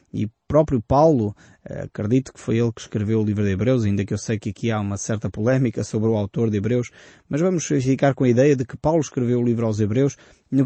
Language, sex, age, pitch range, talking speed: Portuguese, male, 20-39, 105-135 Hz, 240 wpm